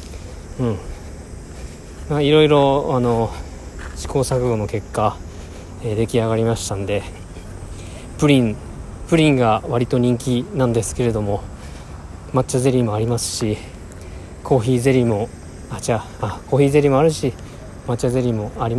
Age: 20-39